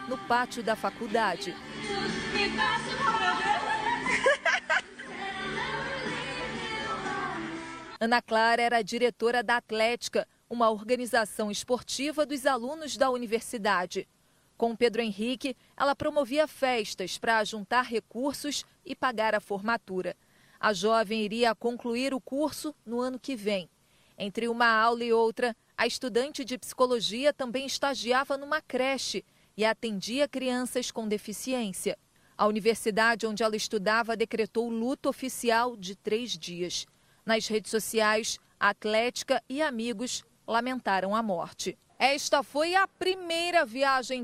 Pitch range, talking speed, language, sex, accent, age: 220-275 Hz, 115 wpm, Portuguese, female, Brazilian, 40-59